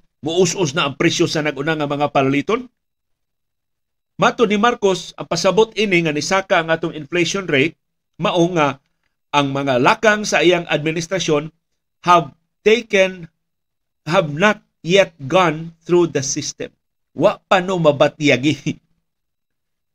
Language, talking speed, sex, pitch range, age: Filipino, 115 wpm, male, 150-195 Hz, 50-69